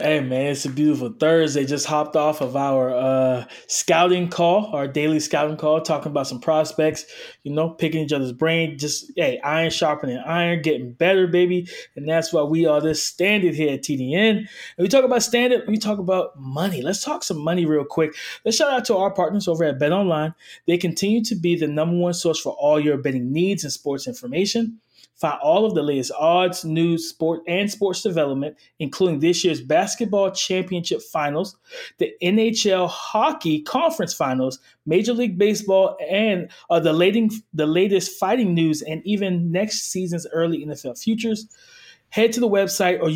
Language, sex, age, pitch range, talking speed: English, male, 20-39, 155-205 Hz, 180 wpm